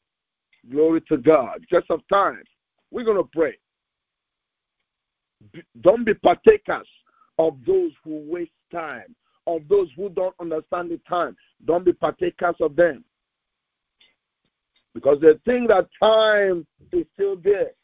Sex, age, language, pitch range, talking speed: male, 50-69, English, 195-295 Hz, 130 wpm